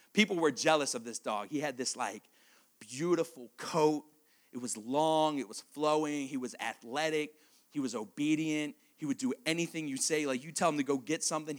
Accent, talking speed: American, 195 wpm